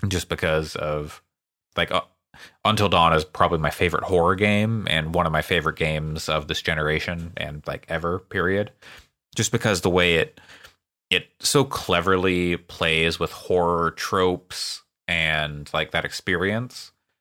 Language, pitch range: English, 80-100 Hz